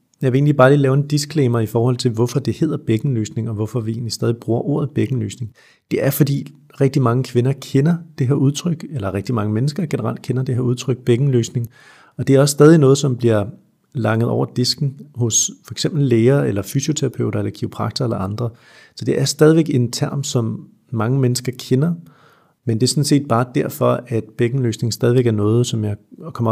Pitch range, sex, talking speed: 115-140 Hz, male, 205 wpm